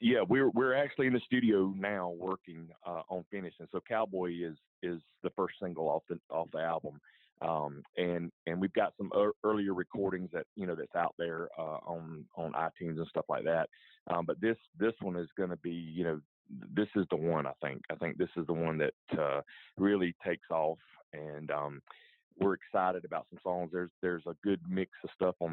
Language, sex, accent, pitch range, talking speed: English, male, American, 80-95 Hz, 215 wpm